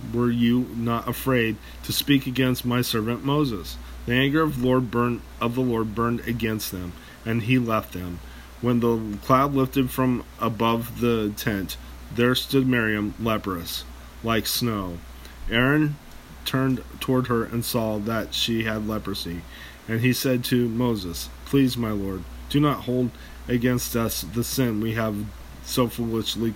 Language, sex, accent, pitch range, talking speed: English, male, American, 95-125 Hz, 155 wpm